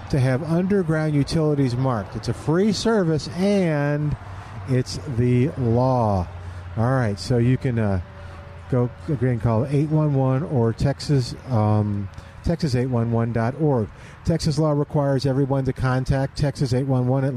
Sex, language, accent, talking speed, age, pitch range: male, English, American, 125 wpm, 50-69, 120-150 Hz